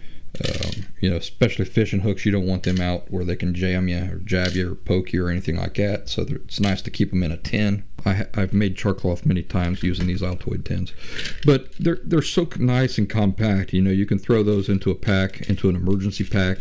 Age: 40-59